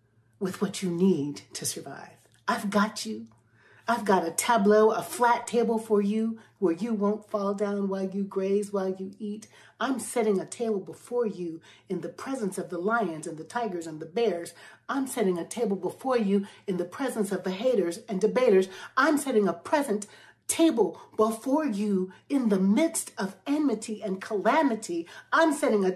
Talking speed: 180 wpm